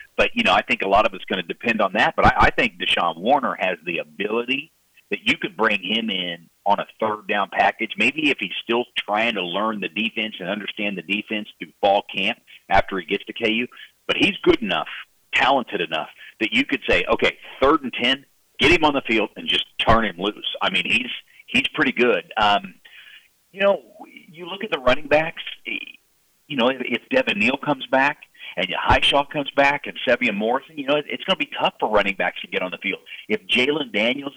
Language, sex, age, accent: English, male, 40-59, American